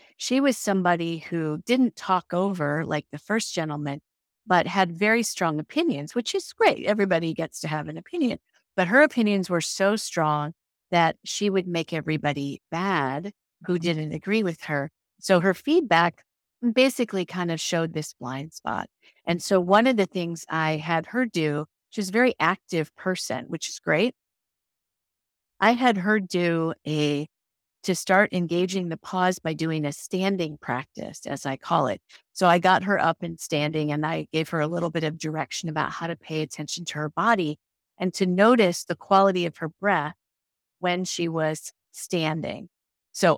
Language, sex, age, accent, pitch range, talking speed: English, female, 50-69, American, 155-195 Hz, 175 wpm